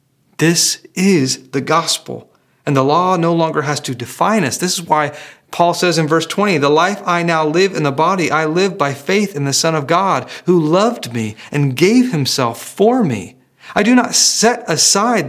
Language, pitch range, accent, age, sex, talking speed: English, 155-215 Hz, American, 30-49, male, 200 wpm